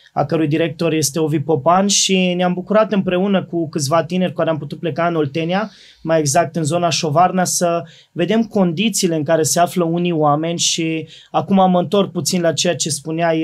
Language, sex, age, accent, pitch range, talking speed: Romanian, male, 20-39, native, 155-185 Hz, 190 wpm